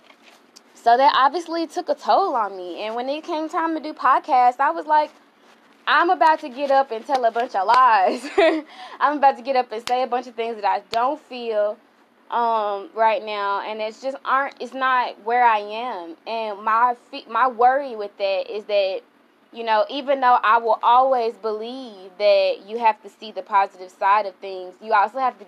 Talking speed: 205 wpm